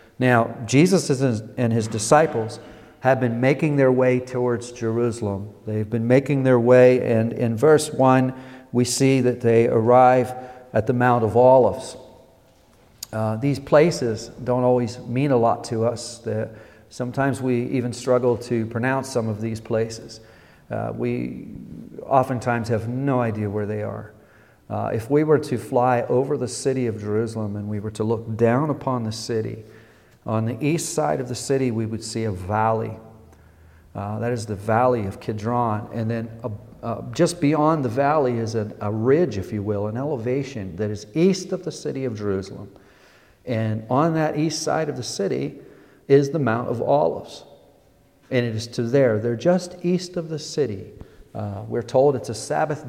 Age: 50-69